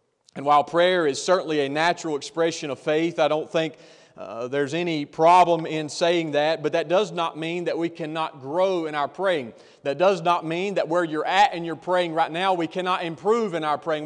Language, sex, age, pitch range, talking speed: English, male, 30-49, 150-180 Hz, 220 wpm